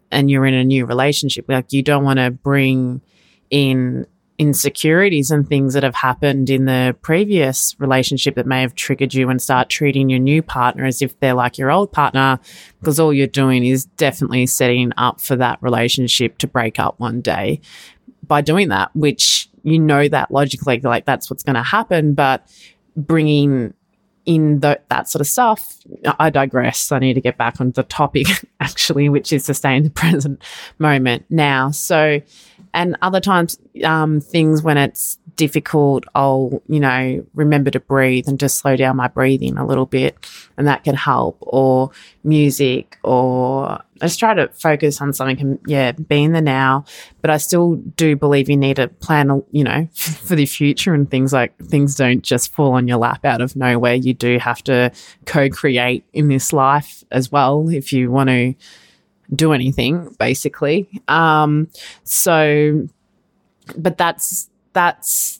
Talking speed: 175 wpm